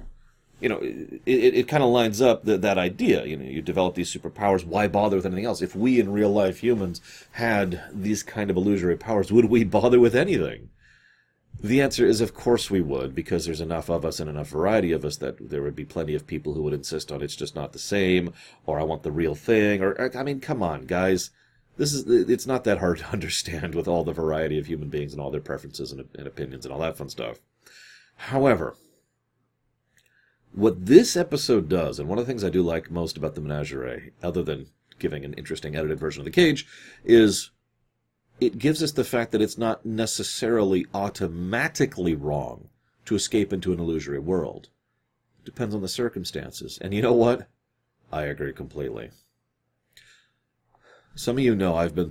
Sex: male